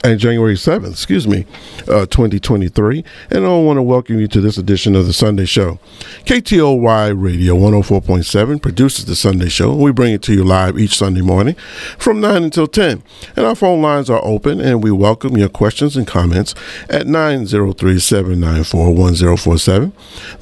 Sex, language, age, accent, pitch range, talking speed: male, English, 50-69, American, 100-125 Hz, 165 wpm